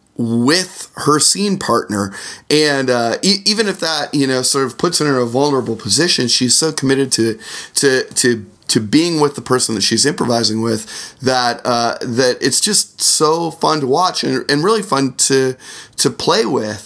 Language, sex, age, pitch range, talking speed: English, male, 30-49, 120-170 Hz, 185 wpm